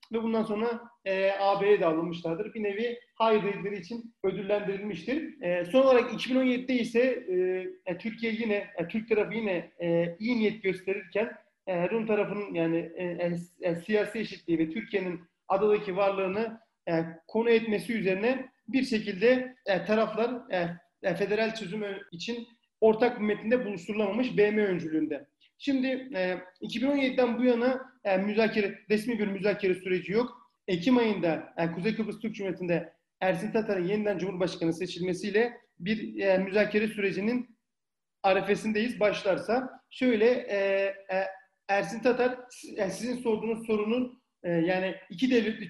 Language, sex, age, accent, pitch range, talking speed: Turkish, male, 40-59, native, 190-235 Hz, 135 wpm